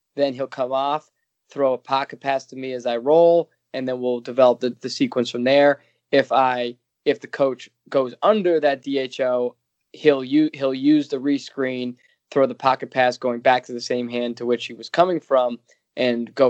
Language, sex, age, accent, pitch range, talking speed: English, male, 20-39, American, 120-140 Hz, 200 wpm